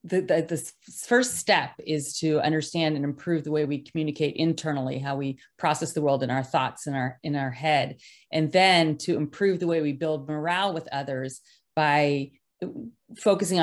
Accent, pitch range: American, 145-175 Hz